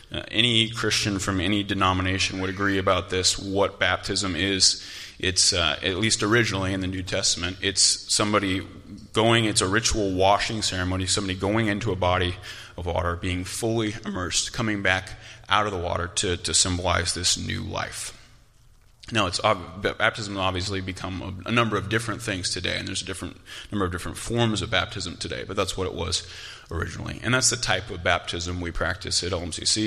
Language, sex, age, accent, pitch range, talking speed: English, male, 30-49, American, 95-110 Hz, 185 wpm